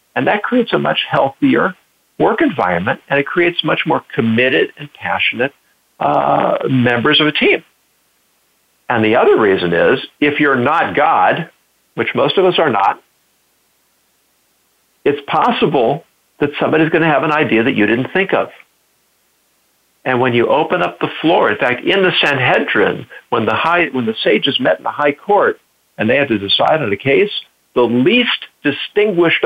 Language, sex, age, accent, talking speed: English, male, 50-69, American, 170 wpm